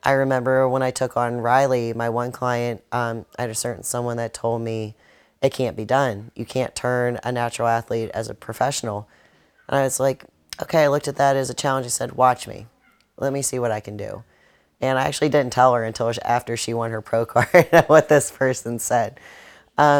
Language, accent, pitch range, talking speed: English, American, 120-135 Hz, 220 wpm